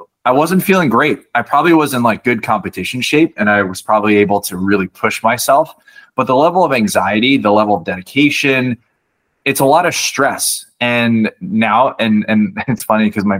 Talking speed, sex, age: 195 wpm, male, 20-39